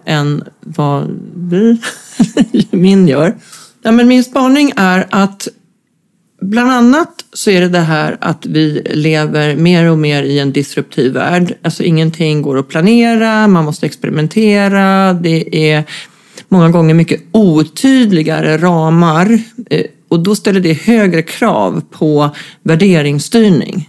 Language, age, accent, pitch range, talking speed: Swedish, 40-59, native, 160-205 Hz, 130 wpm